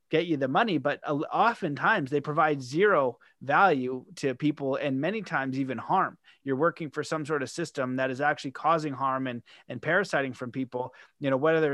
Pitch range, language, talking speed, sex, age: 135-160 Hz, English, 190 wpm, male, 30-49